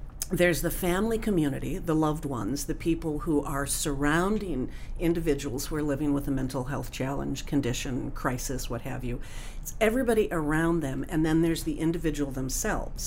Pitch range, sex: 140-180 Hz, female